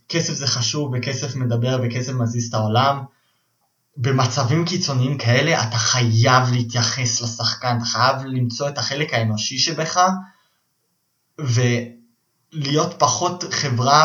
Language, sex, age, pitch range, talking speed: Hebrew, male, 20-39, 120-150 Hz, 110 wpm